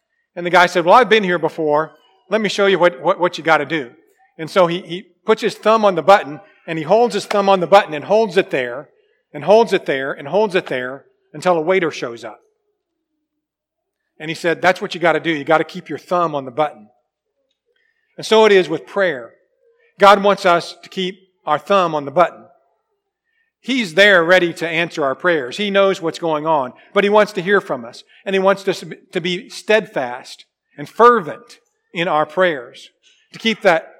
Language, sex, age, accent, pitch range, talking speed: English, male, 40-59, American, 165-245 Hz, 215 wpm